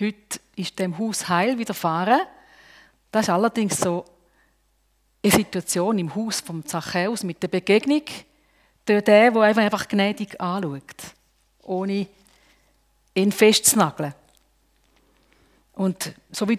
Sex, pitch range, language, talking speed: female, 185-250 Hz, German, 110 wpm